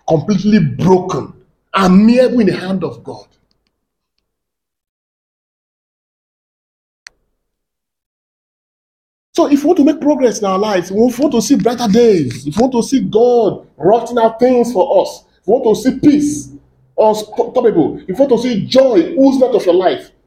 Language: English